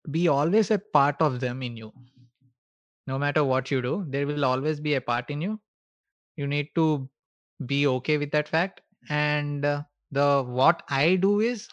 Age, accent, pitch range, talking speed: 20-39, native, 130-160 Hz, 180 wpm